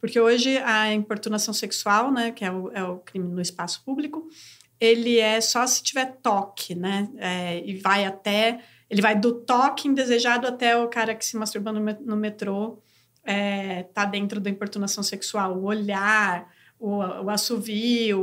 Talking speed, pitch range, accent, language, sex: 165 wpm, 200-245 Hz, Brazilian, Portuguese, female